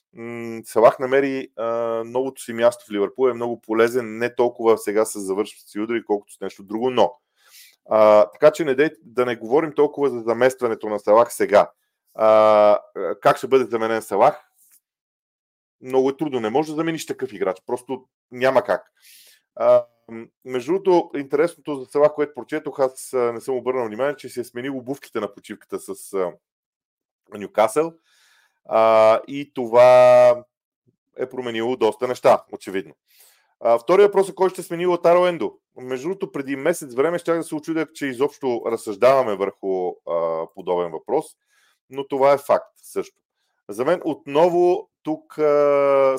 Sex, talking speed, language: male, 155 wpm, Bulgarian